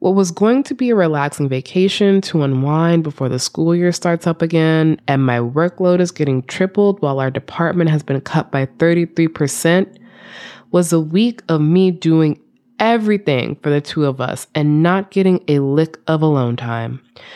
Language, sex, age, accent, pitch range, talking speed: English, female, 20-39, American, 145-195 Hz, 175 wpm